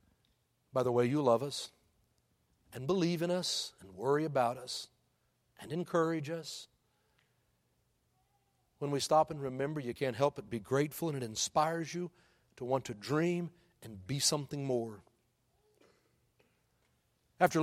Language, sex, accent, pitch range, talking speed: English, male, American, 135-220 Hz, 140 wpm